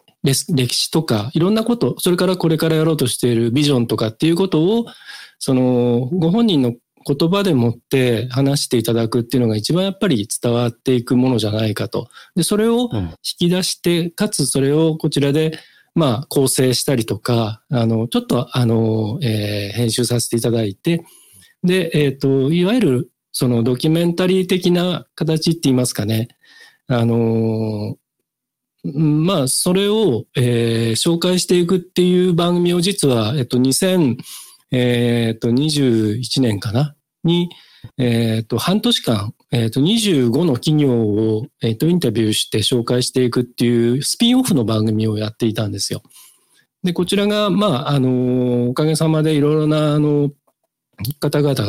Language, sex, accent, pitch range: Japanese, male, native, 120-170 Hz